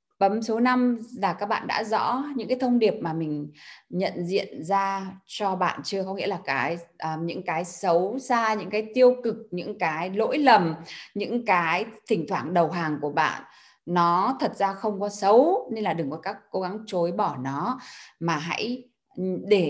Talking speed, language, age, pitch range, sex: 195 wpm, Vietnamese, 20-39, 170-225 Hz, female